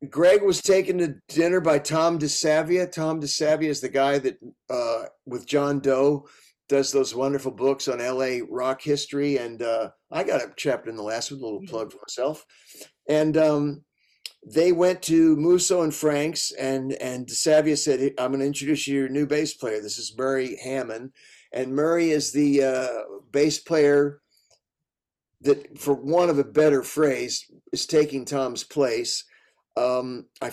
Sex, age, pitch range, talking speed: male, 50-69, 125-155 Hz, 175 wpm